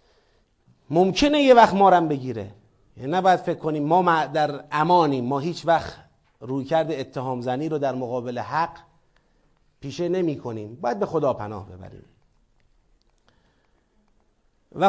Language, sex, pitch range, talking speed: Persian, male, 140-225 Hz, 135 wpm